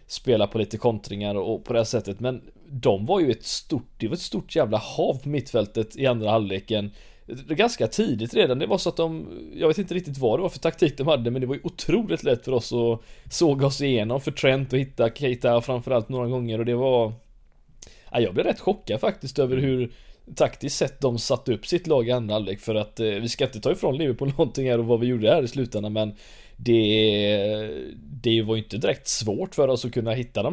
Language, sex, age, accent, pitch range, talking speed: Swedish, male, 20-39, native, 110-135 Hz, 230 wpm